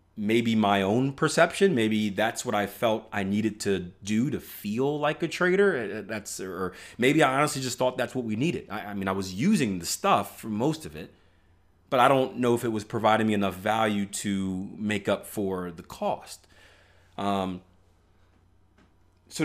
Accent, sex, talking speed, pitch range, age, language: American, male, 185 wpm, 90-120 Hz, 30-49, English